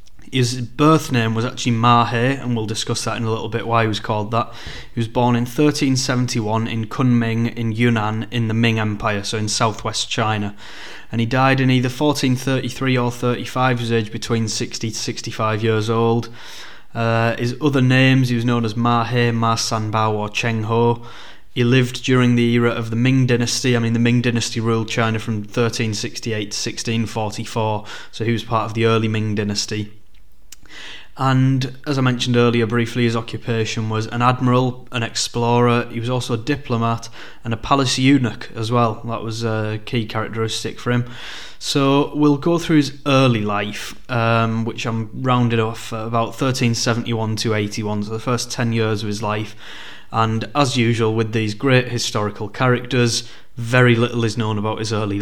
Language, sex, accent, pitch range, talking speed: English, male, British, 110-125 Hz, 185 wpm